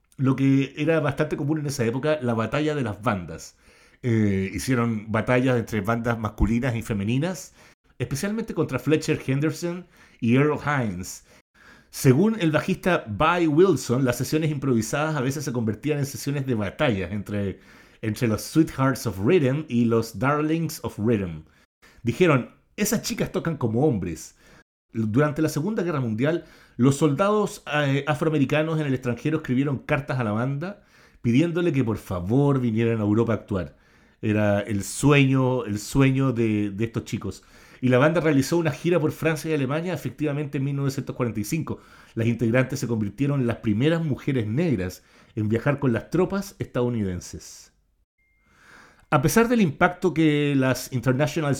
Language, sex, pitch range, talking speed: Spanish, male, 115-155 Hz, 150 wpm